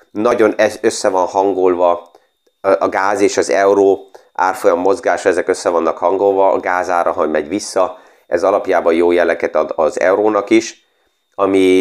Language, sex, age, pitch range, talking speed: Hungarian, male, 30-49, 95-120 Hz, 145 wpm